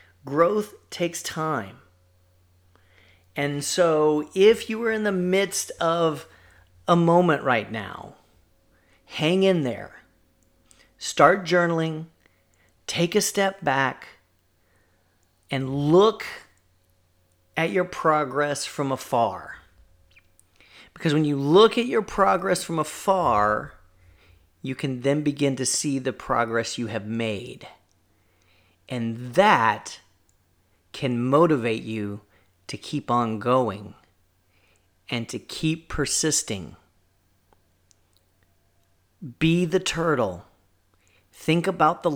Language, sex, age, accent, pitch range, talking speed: English, male, 40-59, American, 90-145 Hz, 100 wpm